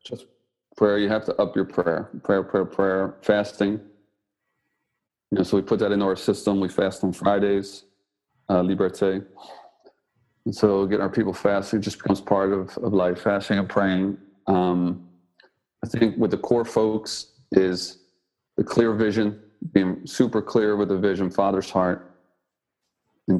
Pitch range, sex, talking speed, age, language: 95-105 Hz, male, 160 wpm, 40-59, English